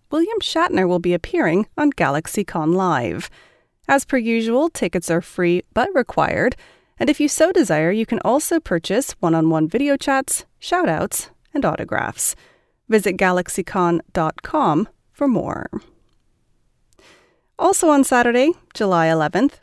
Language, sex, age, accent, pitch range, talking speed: English, female, 30-49, American, 175-290 Hz, 130 wpm